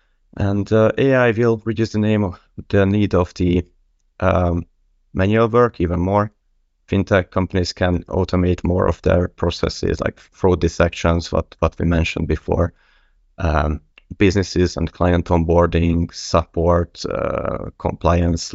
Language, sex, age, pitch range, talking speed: English, male, 30-49, 85-100 Hz, 135 wpm